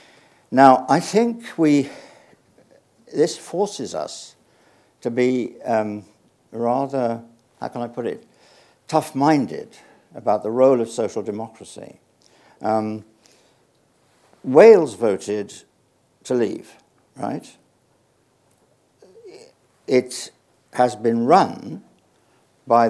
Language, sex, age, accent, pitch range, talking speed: English, male, 60-79, British, 115-155 Hz, 90 wpm